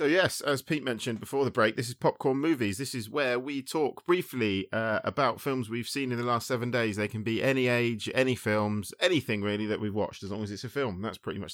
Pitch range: 95-120 Hz